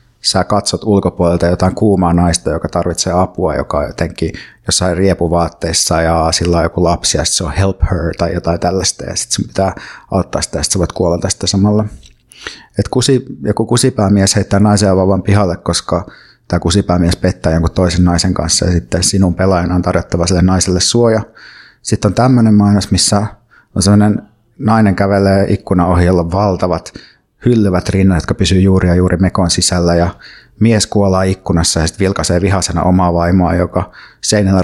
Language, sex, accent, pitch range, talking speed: Finnish, male, native, 85-100 Hz, 170 wpm